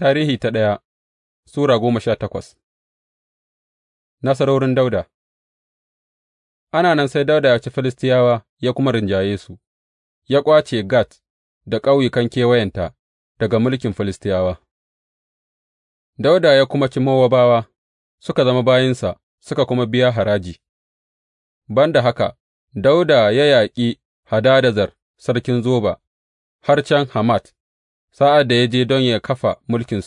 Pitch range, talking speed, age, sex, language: 100-130 Hz, 95 wpm, 30-49, male, English